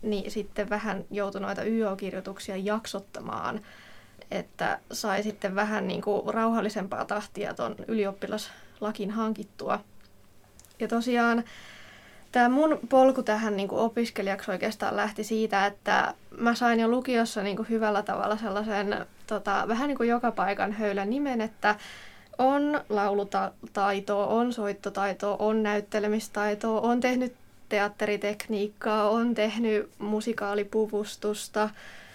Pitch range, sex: 200-230 Hz, female